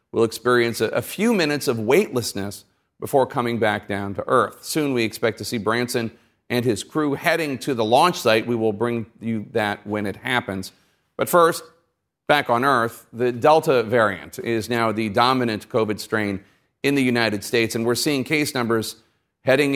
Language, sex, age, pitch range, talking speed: English, male, 40-59, 110-135 Hz, 180 wpm